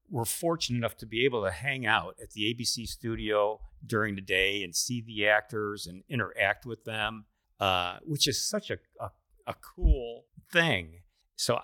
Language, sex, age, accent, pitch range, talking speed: English, male, 50-69, American, 95-125 Hz, 175 wpm